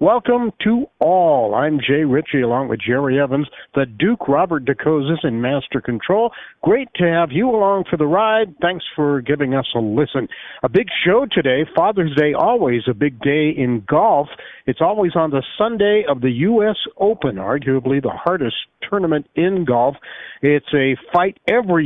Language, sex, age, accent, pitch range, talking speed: English, male, 60-79, American, 135-180 Hz, 170 wpm